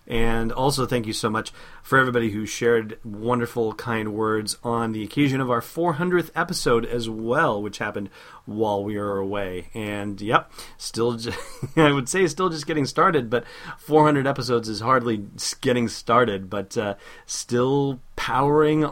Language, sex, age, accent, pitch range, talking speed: English, male, 30-49, American, 110-145 Hz, 155 wpm